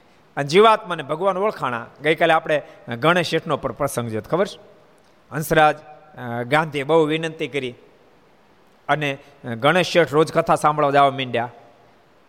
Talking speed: 130 wpm